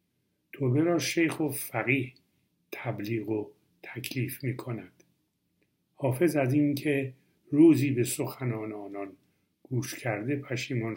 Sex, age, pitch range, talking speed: male, 50-69, 105-135 Hz, 105 wpm